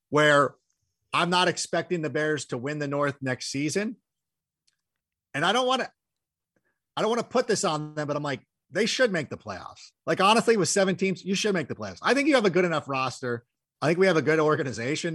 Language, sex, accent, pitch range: English, male, American, 130-190 Hz